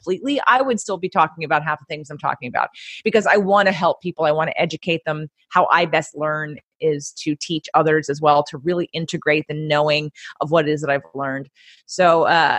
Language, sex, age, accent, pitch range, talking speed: English, female, 30-49, American, 155-205 Hz, 230 wpm